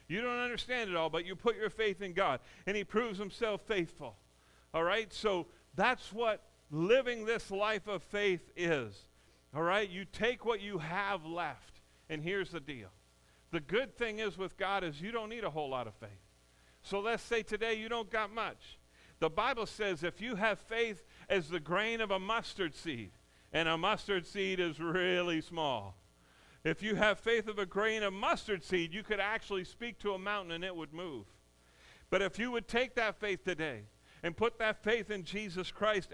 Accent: American